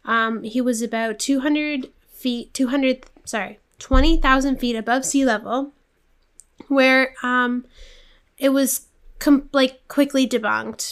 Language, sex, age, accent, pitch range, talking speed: English, female, 10-29, American, 230-265 Hz, 110 wpm